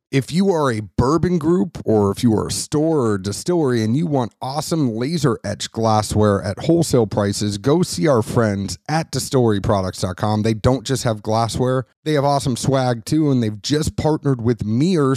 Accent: American